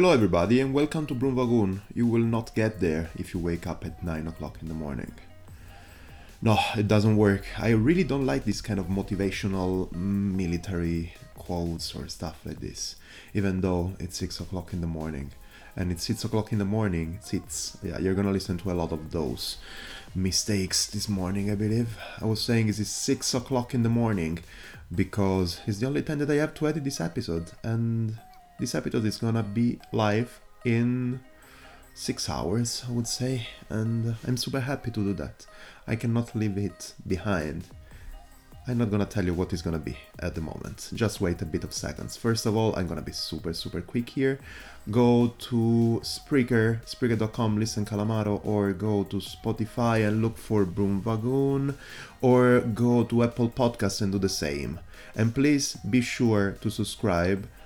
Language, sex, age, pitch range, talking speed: English, male, 30-49, 90-120 Hz, 180 wpm